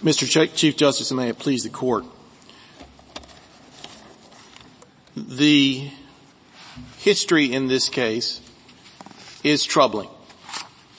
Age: 40-59